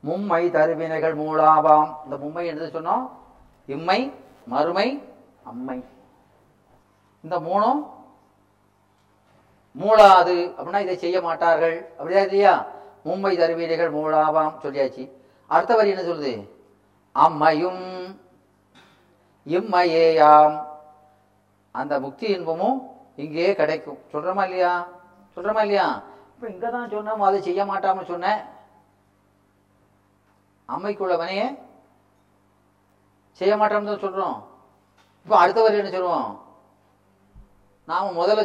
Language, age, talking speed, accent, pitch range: Tamil, 40-59, 60 wpm, native, 135-180 Hz